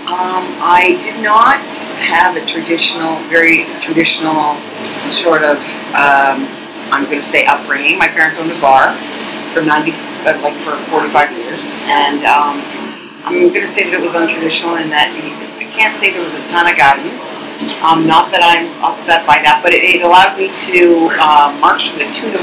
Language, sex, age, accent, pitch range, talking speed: English, female, 40-59, American, 150-180 Hz, 180 wpm